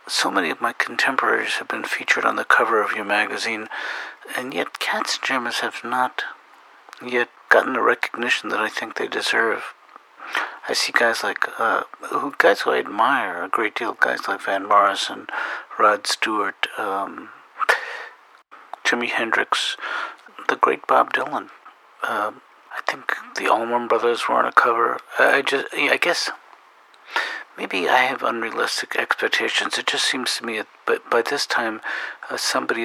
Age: 60-79